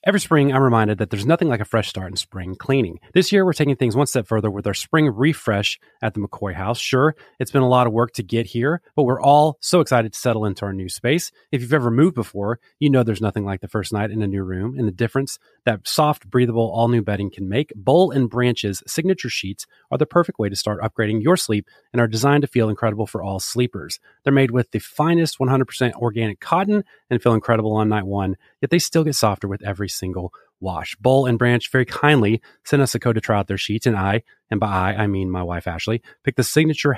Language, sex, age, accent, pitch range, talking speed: English, male, 30-49, American, 105-140 Hz, 245 wpm